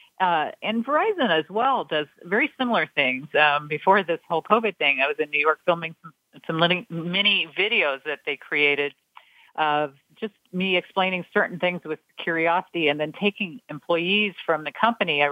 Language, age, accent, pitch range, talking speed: English, 50-69, American, 155-200 Hz, 170 wpm